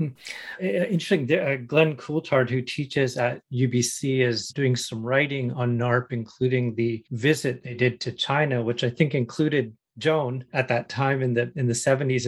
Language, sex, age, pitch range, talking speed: English, male, 40-59, 125-140 Hz, 160 wpm